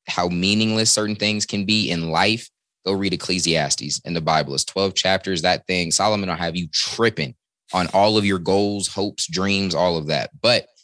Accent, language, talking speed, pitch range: American, English, 195 wpm, 95-115 Hz